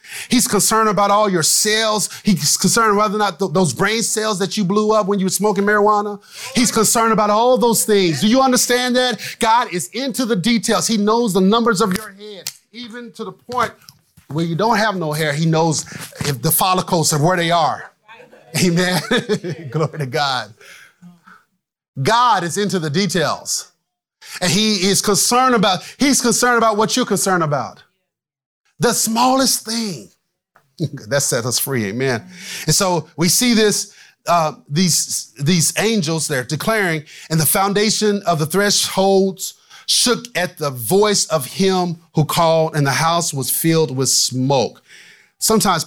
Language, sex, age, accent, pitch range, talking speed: English, male, 30-49, American, 155-215 Hz, 165 wpm